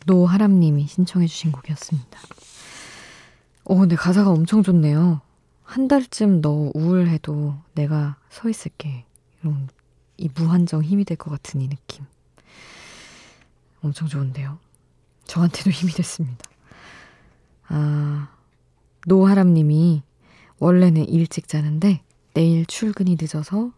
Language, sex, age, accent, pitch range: Korean, female, 20-39, native, 145-180 Hz